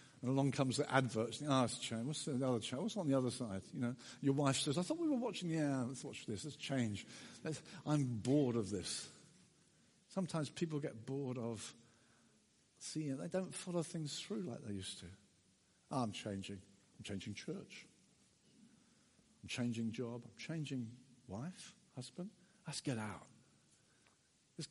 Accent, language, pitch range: British, English, 125-180 Hz